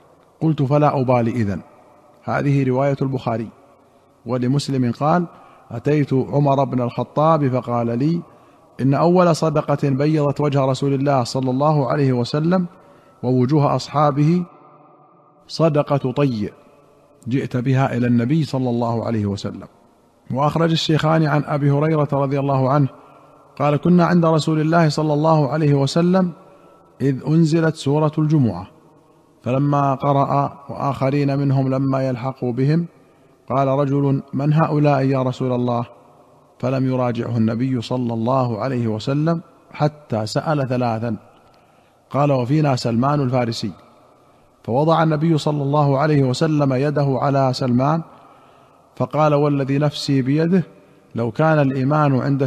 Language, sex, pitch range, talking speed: Arabic, male, 125-150 Hz, 120 wpm